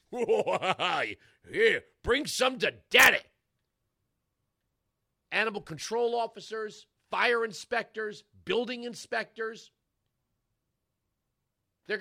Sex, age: male, 40-59